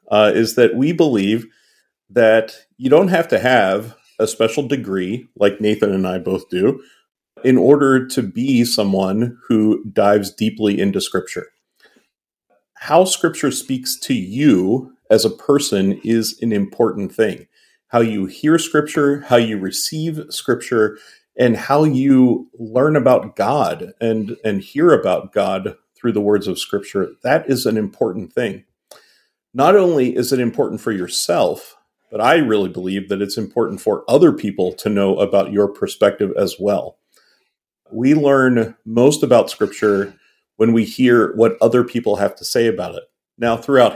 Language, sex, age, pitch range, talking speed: English, male, 40-59, 105-130 Hz, 155 wpm